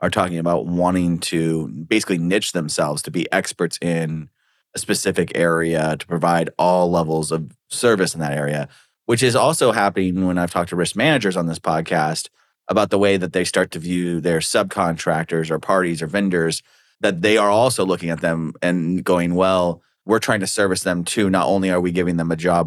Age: 30-49